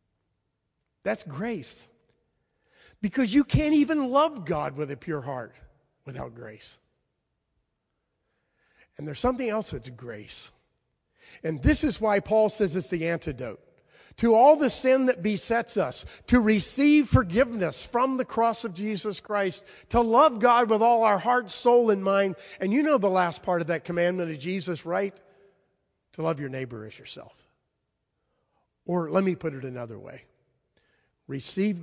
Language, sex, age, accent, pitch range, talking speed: English, male, 50-69, American, 135-205 Hz, 155 wpm